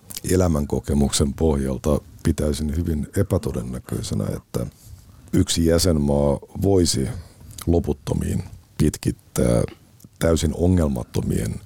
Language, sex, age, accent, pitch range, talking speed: Finnish, male, 50-69, native, 65-85 Hz, 65 wpm